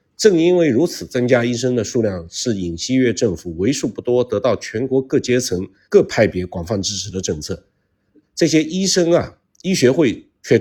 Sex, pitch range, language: male, 100-140 Hz, Chinese